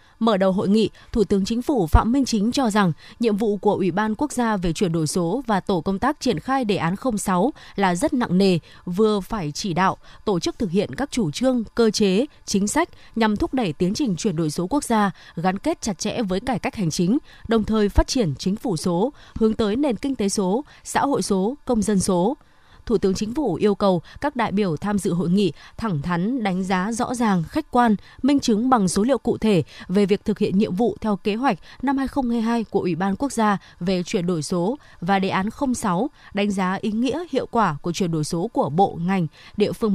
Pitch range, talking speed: 185-240 Hz, 235 wpm